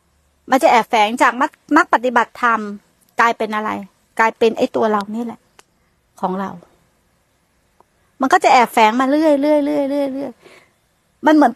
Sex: female